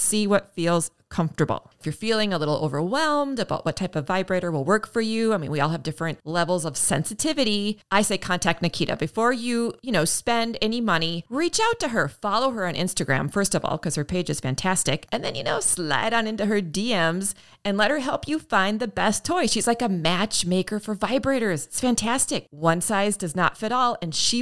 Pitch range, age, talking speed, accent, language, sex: 165-230 Hz, 30-49, 220 wpm, American, English, female